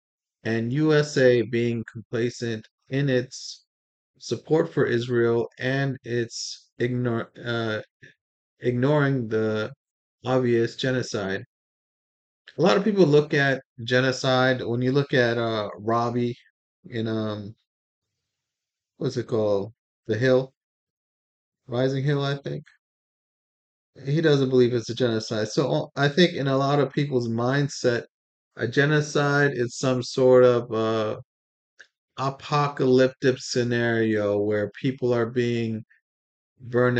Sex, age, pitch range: male, 30-49, 115-130 Hz